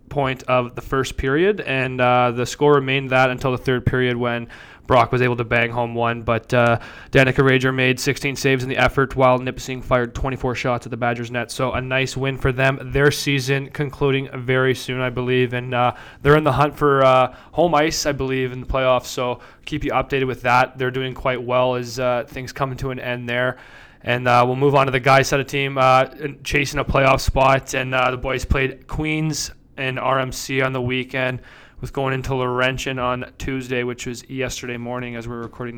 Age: 20-39